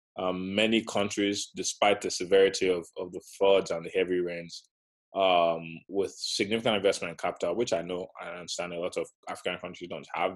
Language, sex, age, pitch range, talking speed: English, male, 20-39, 90-105 Hz, 185 wpm